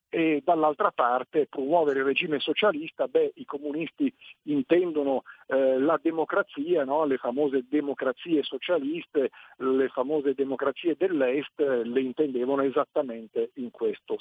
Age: 50-69